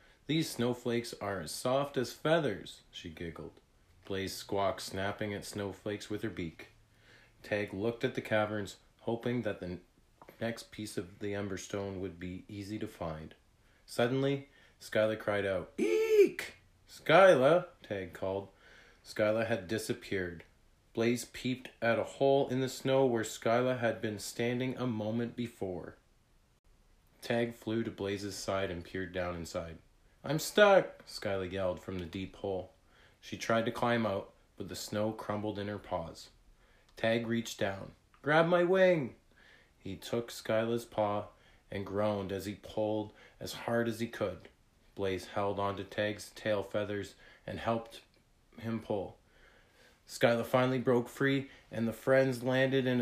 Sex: male